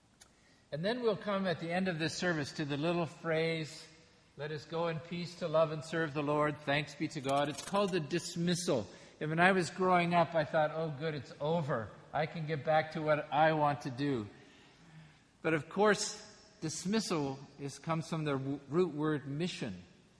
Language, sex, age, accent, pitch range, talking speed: English, male, 50-69, American, 135-165 Hz, 195 wpm